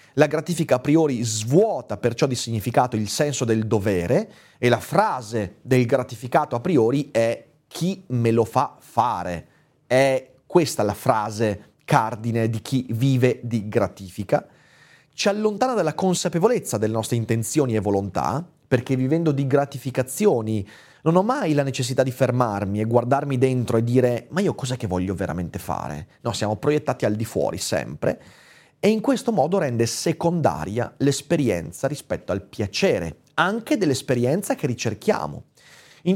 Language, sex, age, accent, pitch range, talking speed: Italian, male, 30-49, native, 115-155 Hz, 150 wpm